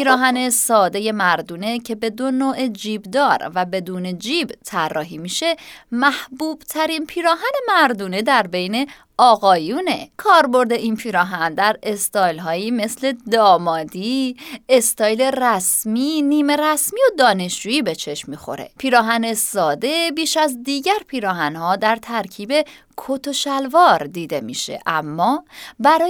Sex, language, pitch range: female, Persian, 185-295 Hz